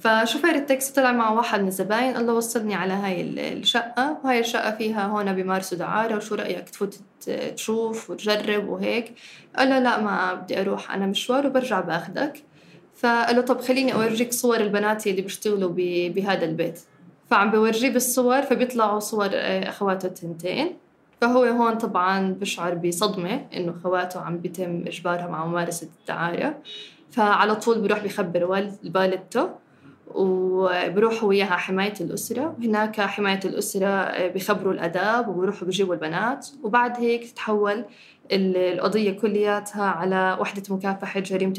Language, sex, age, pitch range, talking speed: Arabic, female, 10-29, 185-235 Hz, 135 wpm